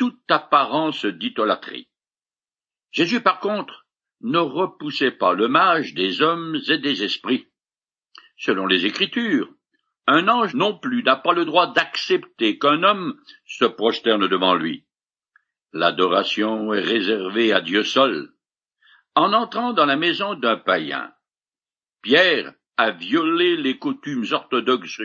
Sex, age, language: male, 60-79, French